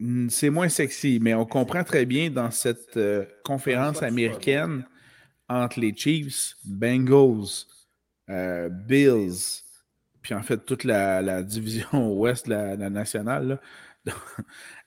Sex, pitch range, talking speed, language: male, 110-135 Hz, 130 wpm, French